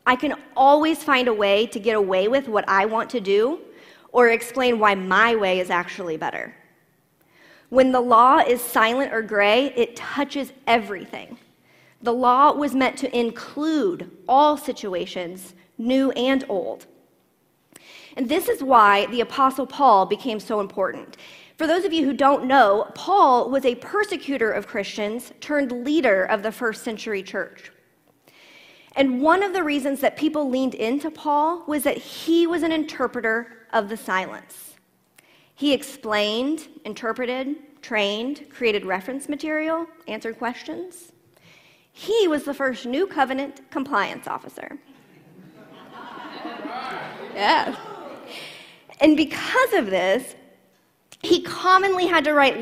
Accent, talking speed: American, 135 wpm